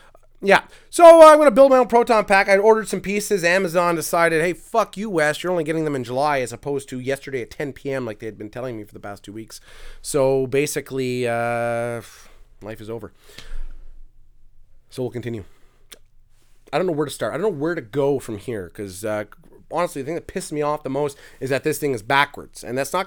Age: 30-49